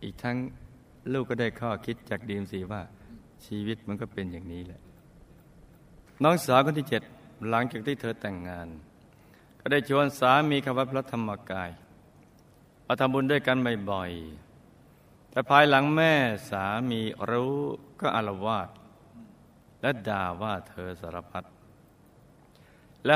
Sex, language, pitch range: male, Thai, 100-135 Hz